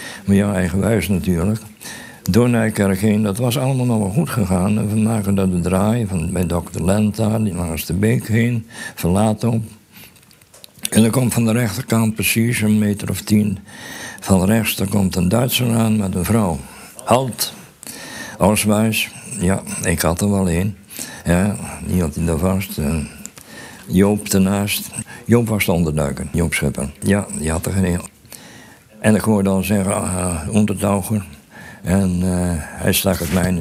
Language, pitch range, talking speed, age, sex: Dutch, 90-110 Hz, 165 wpm, 60-79, male